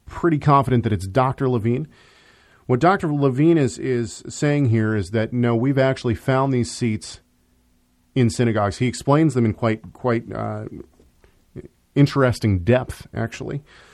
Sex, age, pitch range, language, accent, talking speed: male, 40-59, 105-135 Hz, English, American, 140 wpm